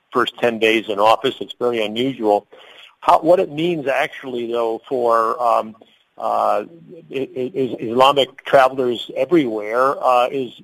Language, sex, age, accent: English, male, 50-69, American